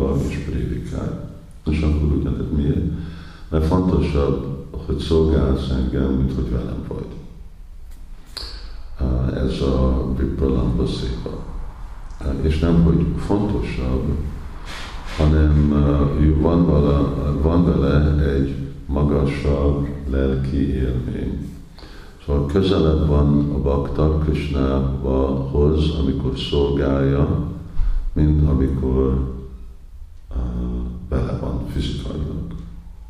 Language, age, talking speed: Hungarian, 50-69, 80 wpm